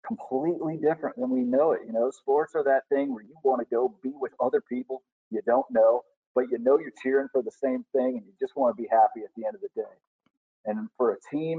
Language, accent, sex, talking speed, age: English, American, male, 260 wpm, 40-59